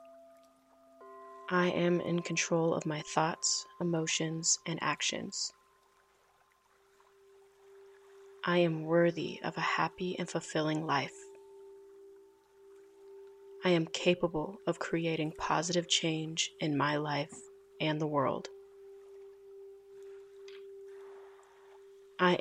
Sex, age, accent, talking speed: female, 20-39, American, 90 wpm